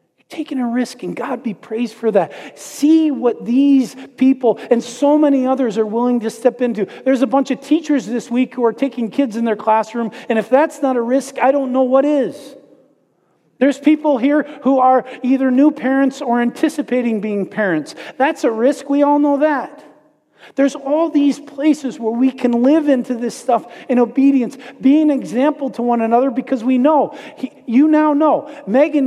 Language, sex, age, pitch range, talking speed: English, male, 40-59, 210-270 Hz, 190 wpm